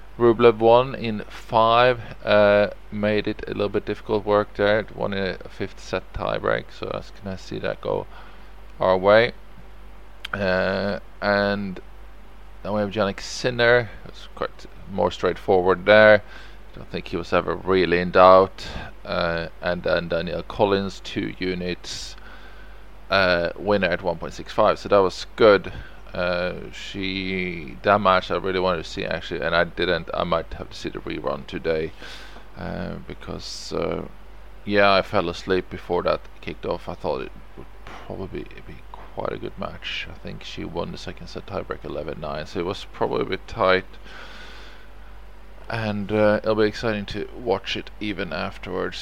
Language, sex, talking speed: English, male, 165 wpm